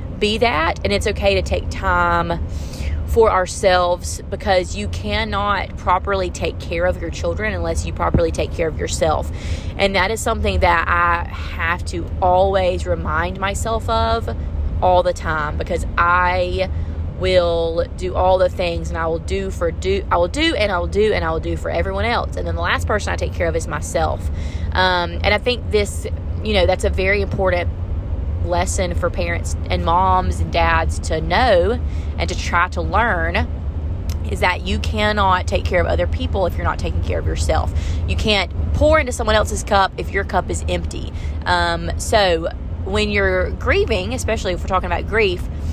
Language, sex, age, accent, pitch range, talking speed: English, female, 20-39, American, 80-90 Hz, 185 wpm